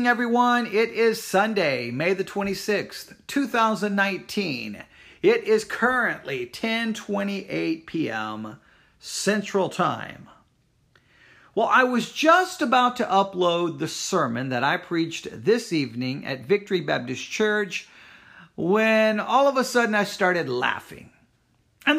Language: English